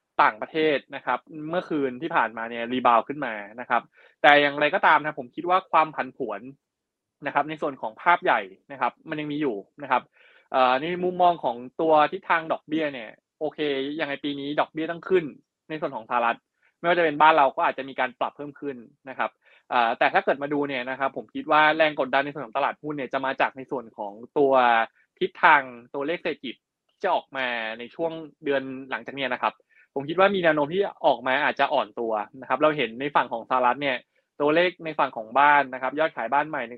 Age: 20-39